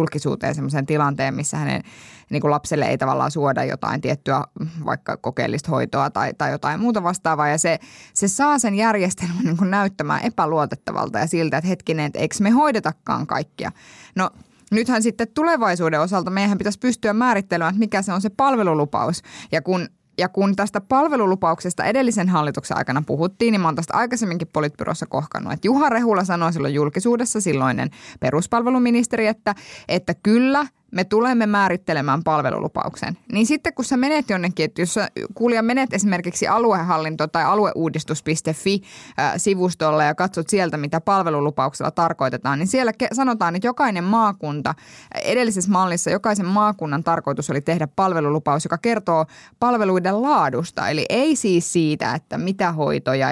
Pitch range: 155-225 Hz